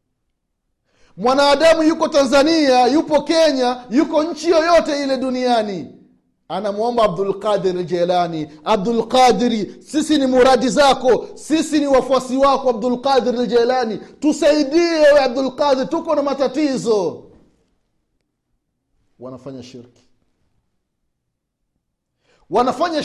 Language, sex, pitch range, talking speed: Swahili, male, 205-295 Hz, 90 wpm